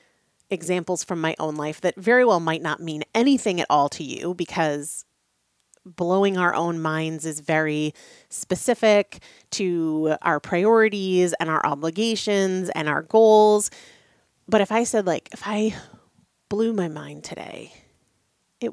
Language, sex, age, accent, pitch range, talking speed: English, female, 30-49, American, 155-190 Hz, 145 wpm